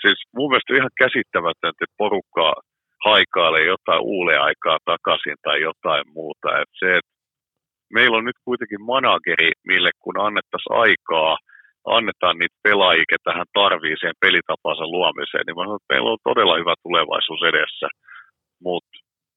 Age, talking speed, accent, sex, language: 50-69, 135 wpm, native, male, Finnish